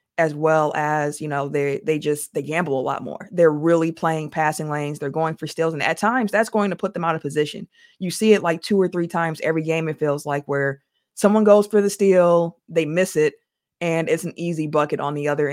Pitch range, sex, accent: 150-185 Hz, female, American